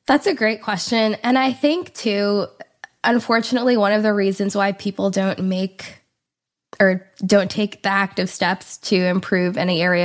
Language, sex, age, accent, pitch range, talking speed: English, female, 20-39, American, 185-200 Hz, 160 wpm